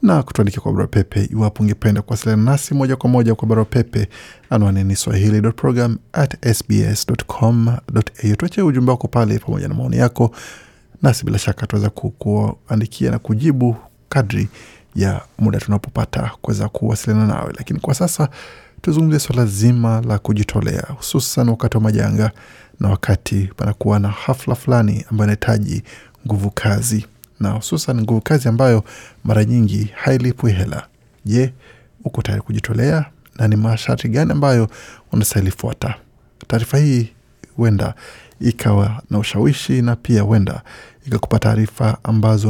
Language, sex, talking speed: Swahili, male, 130 wpm